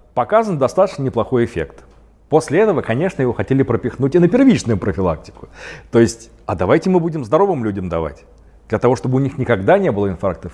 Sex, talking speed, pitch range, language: male, 180 wpm, 95-130 Hz, Russian